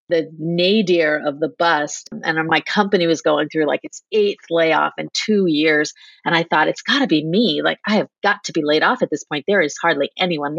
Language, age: English, 30-49